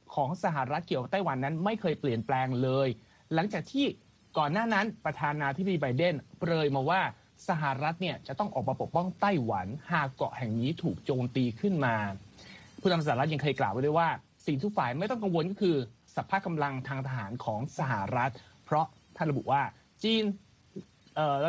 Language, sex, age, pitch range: Thai, male, 30-49, 130-175 Hz